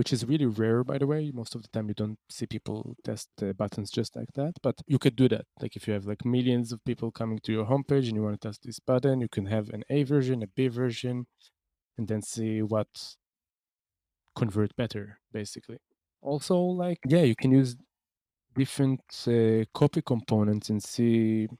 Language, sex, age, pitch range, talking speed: English, male, 20-39, 110-135 Hz, 205 wpm